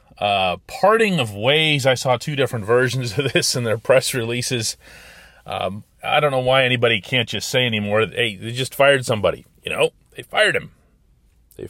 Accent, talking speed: American, 185 wpm